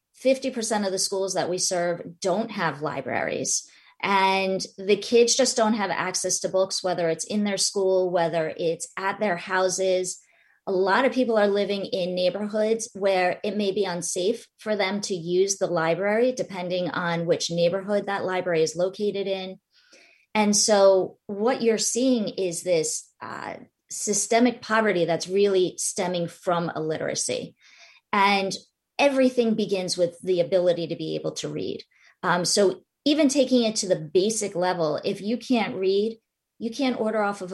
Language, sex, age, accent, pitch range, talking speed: English, female, 30-49, American, 180-215 Hz, 165 wpm